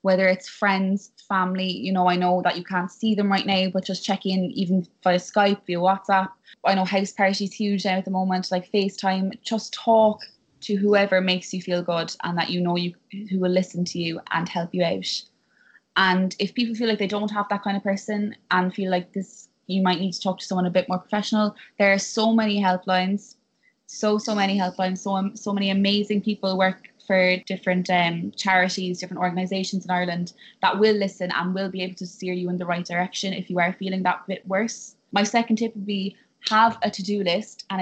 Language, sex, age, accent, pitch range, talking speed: English, female, 20-39, Irish, 180-205 Hz, 215 wpm